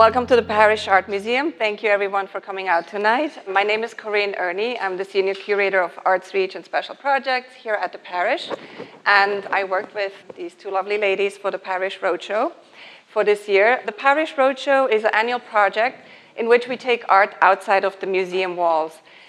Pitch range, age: 190-225 Hz, 30-49